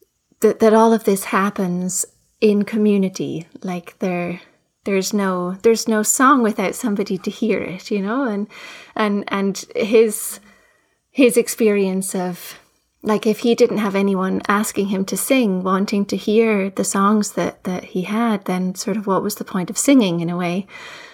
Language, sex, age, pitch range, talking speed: English, female, 20-39, 190-220 Hz, 170 wpm